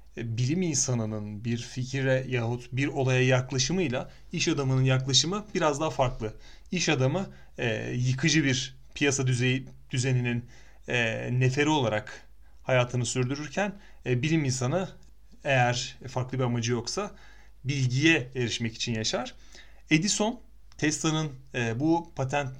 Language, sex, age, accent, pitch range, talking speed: Turkish, male, 30-49, native, 125-150 Hz, 105 wpm